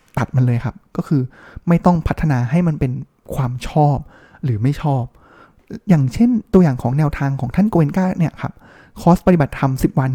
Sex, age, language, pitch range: male, 20-39, Thai, 135-175 Hz